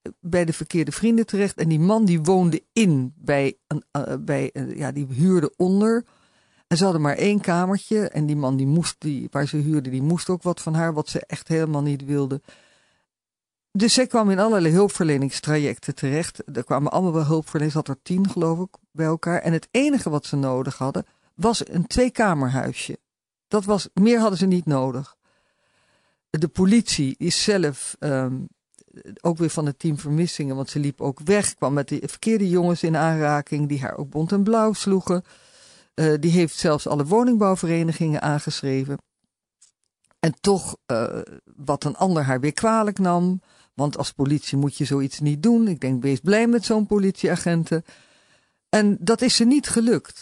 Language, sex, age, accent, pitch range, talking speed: Dutch, female, 50-69, Dutch, 145-195 Hz, 180 wpm